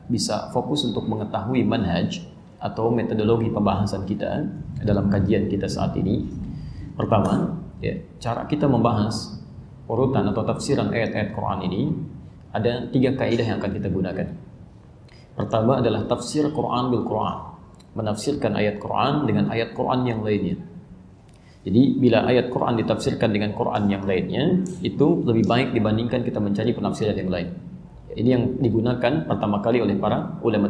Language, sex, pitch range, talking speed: Indonesian, male, 105-130 Hz, 140 wpm